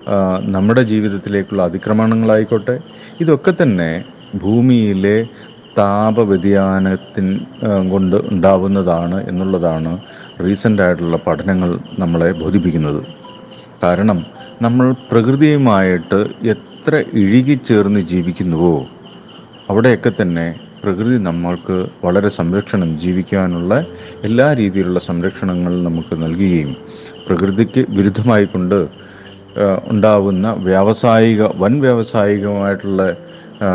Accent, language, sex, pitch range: native, Malayalam, male, 90-105 Hz